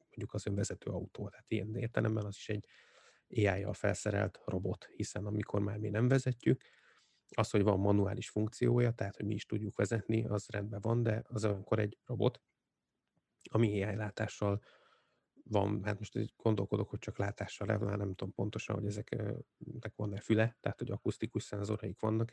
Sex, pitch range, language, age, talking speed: male, 100-115 Hz, Hungarian, 30-49, 160 wpm